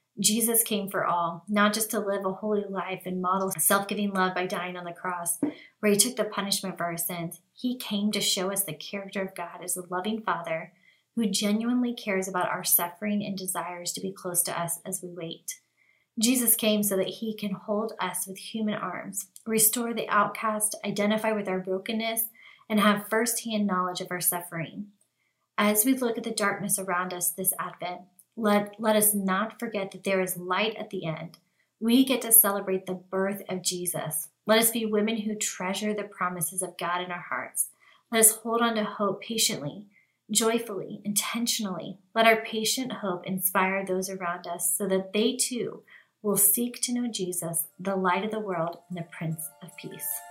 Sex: female